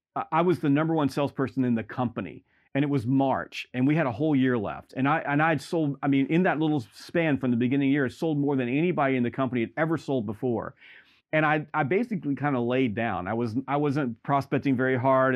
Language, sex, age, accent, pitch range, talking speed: English, male, 40-59, American, 125-165 Hz, 250 wpm